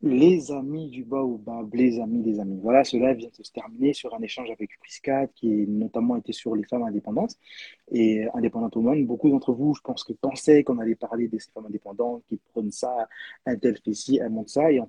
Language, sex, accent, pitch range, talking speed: French, male, French, 110-140 Hz, 230 wpm